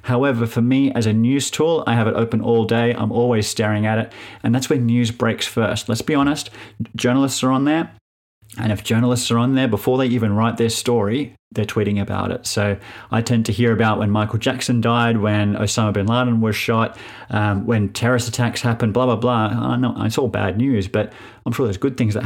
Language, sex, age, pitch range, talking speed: English, male, 30-49, 110-125 Hz, 220 wpm